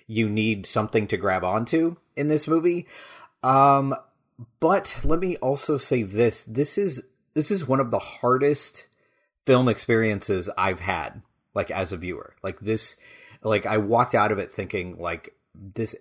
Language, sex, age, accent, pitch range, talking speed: English, male, 30-49, American, 105-130 Hz, 160 wpm